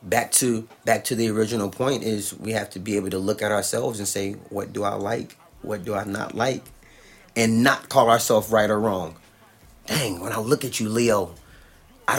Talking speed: 210 wpm